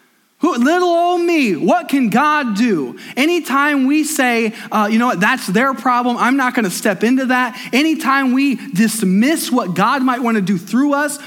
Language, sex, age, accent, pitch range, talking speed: English, male, 20-39, American, 210-270 Hz, 175 wpm